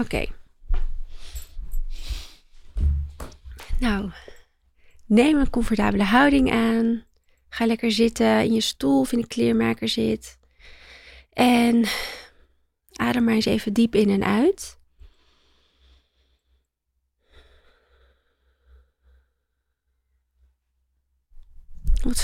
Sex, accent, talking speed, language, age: female, Dutch, 75 wpm, Dutch, 30-49